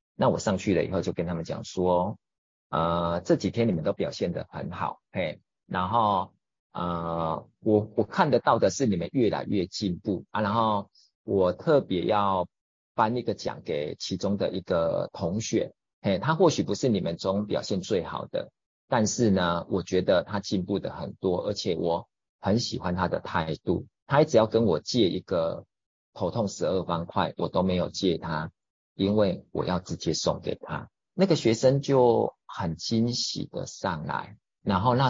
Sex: male